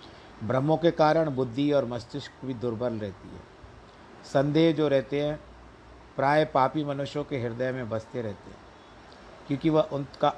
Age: 50-69